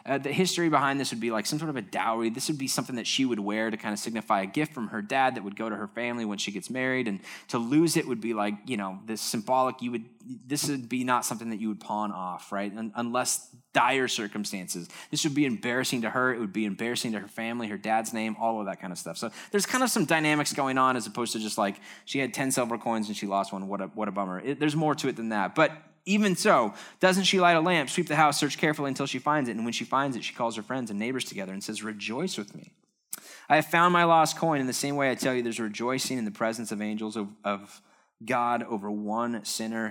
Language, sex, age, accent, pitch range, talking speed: English, male, 20-39, American, 110-150 Hz, 280 wpm